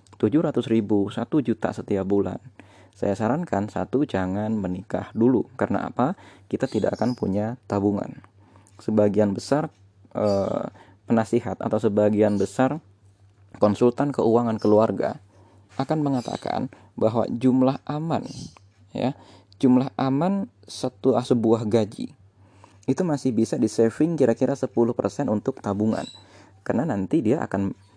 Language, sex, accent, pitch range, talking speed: Indonesian, male, native, 100-125 Hz, 110 wpm